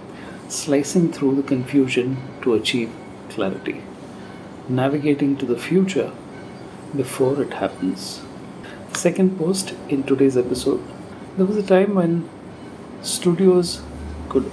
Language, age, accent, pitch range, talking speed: English, 50-69, Indian, 130-160 Hz, 105 wpm